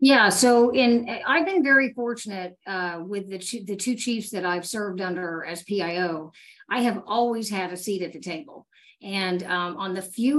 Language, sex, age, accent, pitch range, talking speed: English, female, 50-69, American, 185-230 Hz, 195 wpm